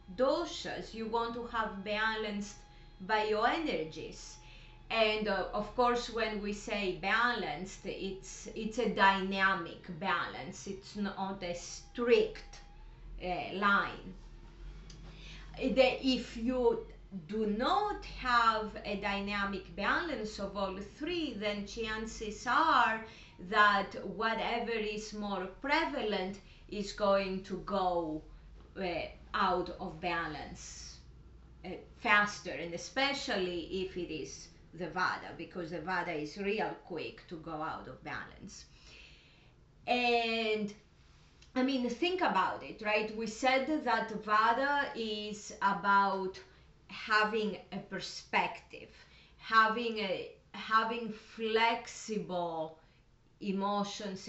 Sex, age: female, 30-49